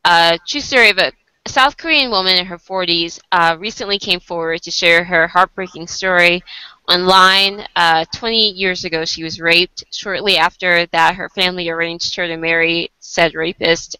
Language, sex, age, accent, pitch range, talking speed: English, female, 20-39, American, 170-195 Hz, 165 wpm